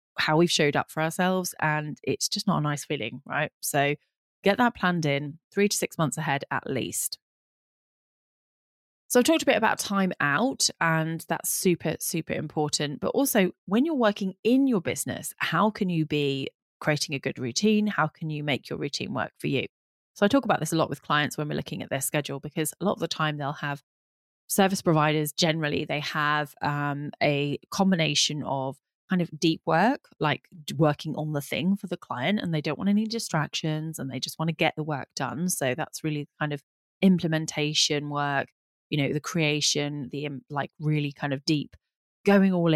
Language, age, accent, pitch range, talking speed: English, 20-39, British, 145-185 Hz, 200 wpm